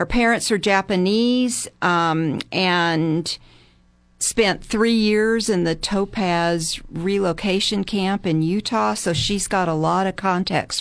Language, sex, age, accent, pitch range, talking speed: English, female, 50-69, American, 175-220 Hz, 130 wpm